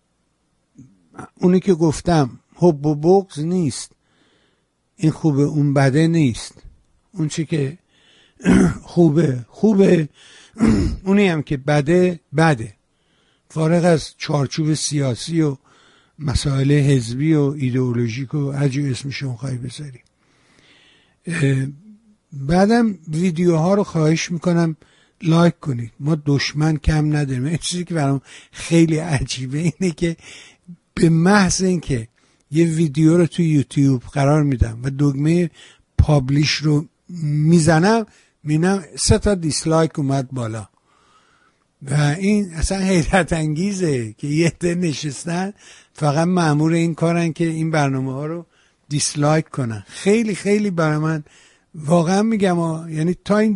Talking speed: 115 wpm